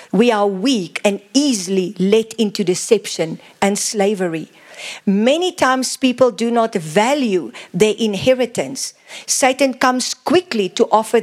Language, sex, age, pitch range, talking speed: English, female, 50-69, 200-275 Hz, 125 wpm